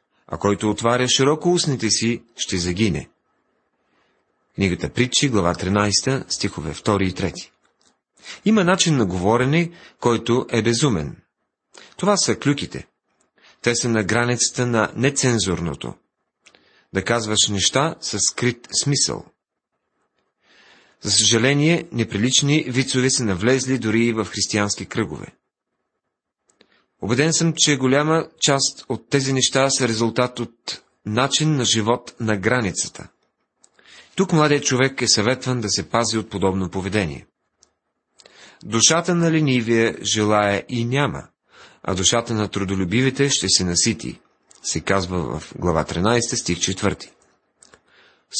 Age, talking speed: 40-59, 120 wpm